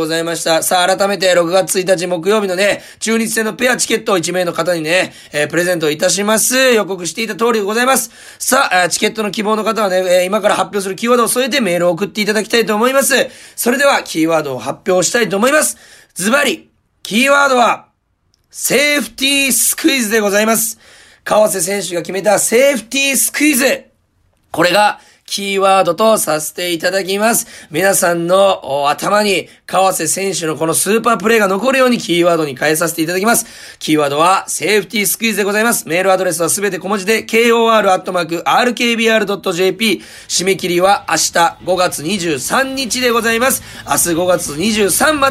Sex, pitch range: male, 180-230 Hz